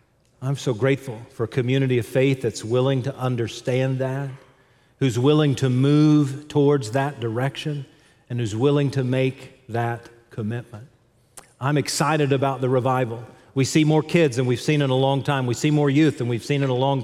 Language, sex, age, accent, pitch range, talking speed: English, male, 40-59, American, 125-150 Hz, 185 wpm